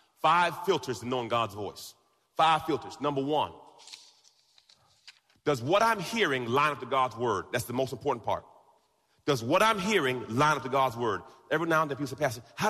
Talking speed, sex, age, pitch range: 190 wpm, male, 30-49, 130-170 Hz